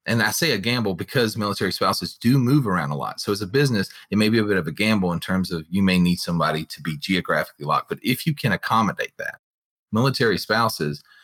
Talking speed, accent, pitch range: 235 wpm, American, 90-110 Hz